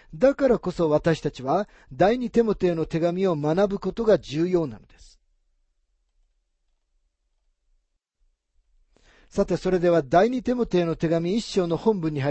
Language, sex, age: Japanese, male, 40-59